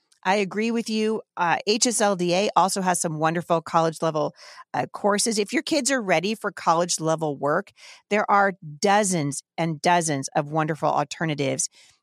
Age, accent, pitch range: 40-59, American, 155-210 Hz